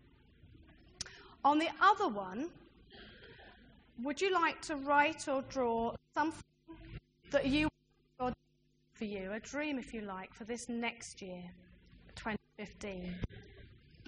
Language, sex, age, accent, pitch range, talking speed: English, female, 30-49, British, 220-285 Hz, 120 wpm